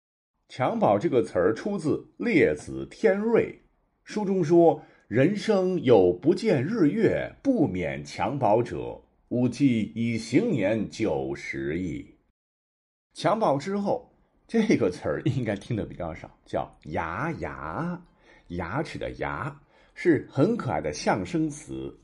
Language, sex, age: Chinese, male, 50-69